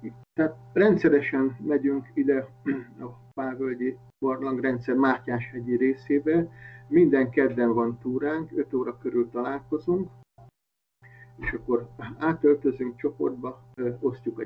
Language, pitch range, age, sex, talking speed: Hungarian, 120-135 Hz, 50-69, male, 90 wpm